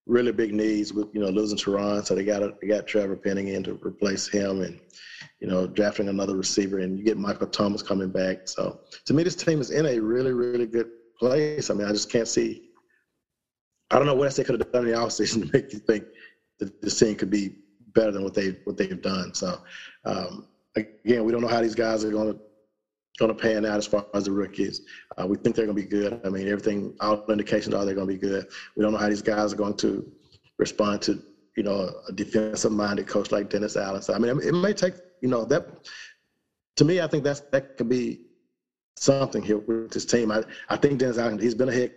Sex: male